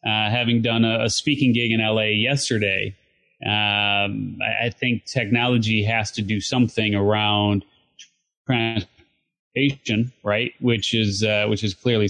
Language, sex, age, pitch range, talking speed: English, male, 30-49, 105-130 Hz, 140 wpm